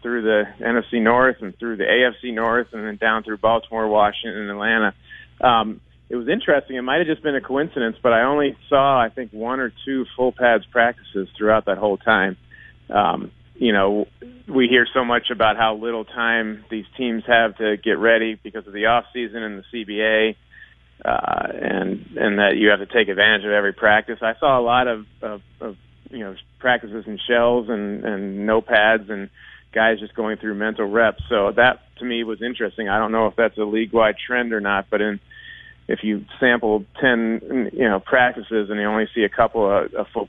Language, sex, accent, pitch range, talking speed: English, male, American, 105-125 Hz, 205 wpm